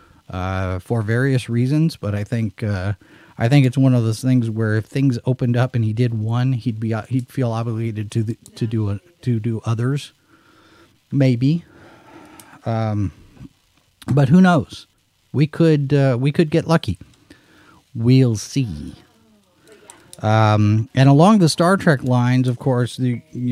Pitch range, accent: 105-135 Hz, American